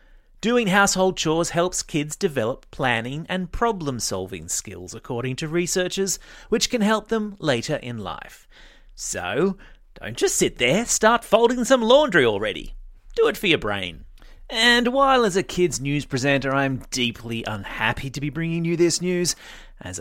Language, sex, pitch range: English, male, 135-210 Hz